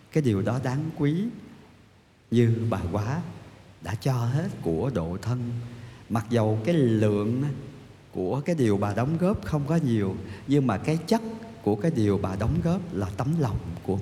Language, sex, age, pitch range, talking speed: Vietnamese, male, 50-69, 100-125 Hz, 175 wpm